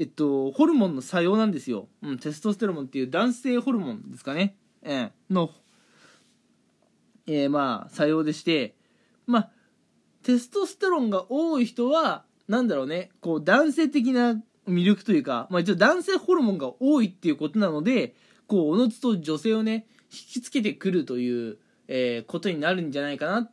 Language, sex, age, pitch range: Japanese, male, 20-39, 165-245 Hz